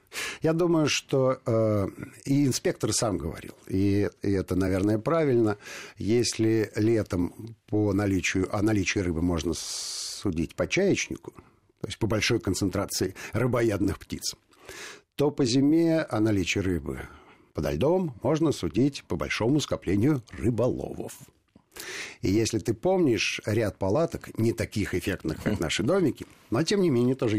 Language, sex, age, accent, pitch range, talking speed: Russian, male, 50-69, native, 90-125 Hz, 135 wpm